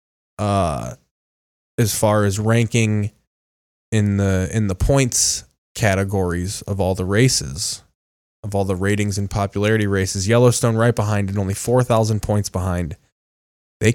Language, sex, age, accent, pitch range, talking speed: English, male, 20-39, American, 95-120 Hz, 135 wpm